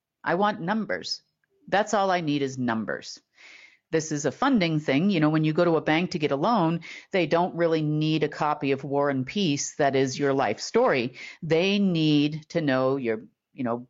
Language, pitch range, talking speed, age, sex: English, 140-210 Hz, 205 wpm, 50-69, female